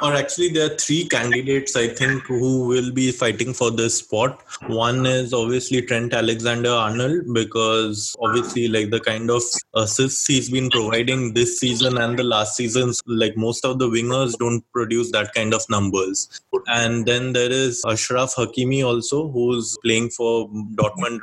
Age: 20-39